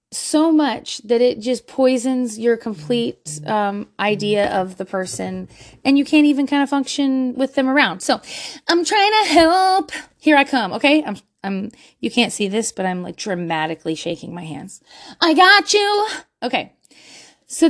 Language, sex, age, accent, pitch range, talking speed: English, female, 20-39, American, 195-300 Hz, 170 wpm